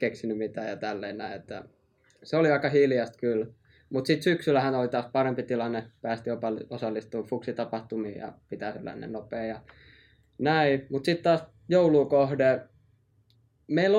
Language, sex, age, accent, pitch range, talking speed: Finnish, male, 20-39, native, 115-140 Hz, 135 wpm